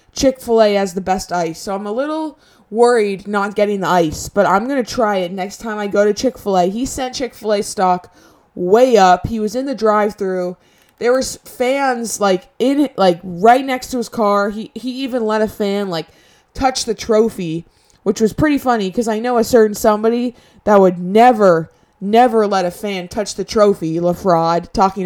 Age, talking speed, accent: 20-39, 195 wpm, American